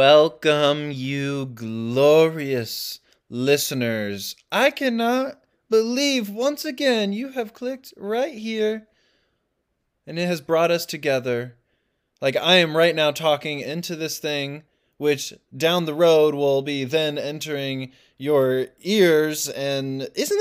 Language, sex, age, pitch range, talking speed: English, male, 20-39, 120-160 Hz, 120 wpm